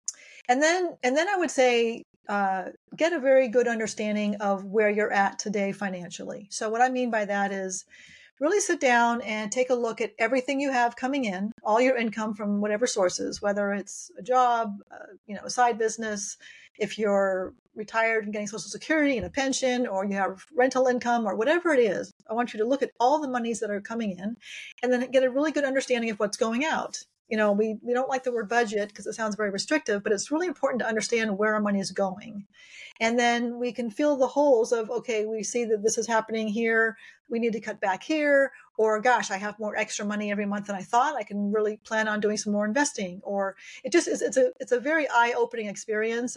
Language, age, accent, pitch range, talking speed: English, 40-59, American, 210-255 Hz, 230 wpm